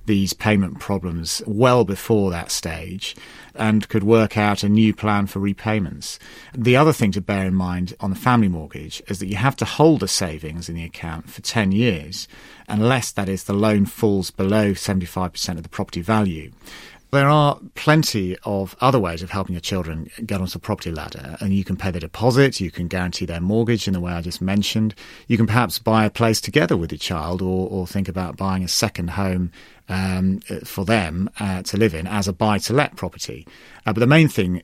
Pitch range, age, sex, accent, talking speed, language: 90-110 Hz, 40-59, male, British, 205 wpm, English